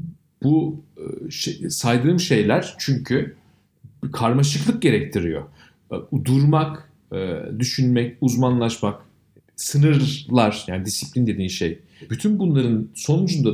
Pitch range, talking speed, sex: 120-155 Hz, 80 wpm, male